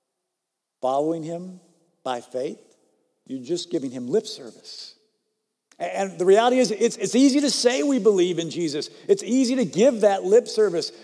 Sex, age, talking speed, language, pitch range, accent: male, 50-69, 165 wpm, English, 160-230 Hz, American